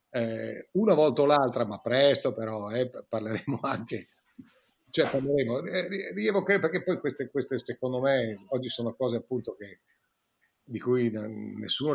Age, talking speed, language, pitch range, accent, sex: 50-69, 135 wpm, Italian, 120-150 Hz, native, male